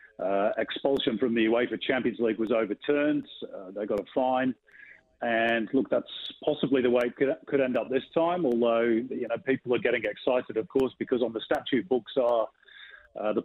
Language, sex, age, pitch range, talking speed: English, male, 40-59, 115-135 Hz, 195 wpm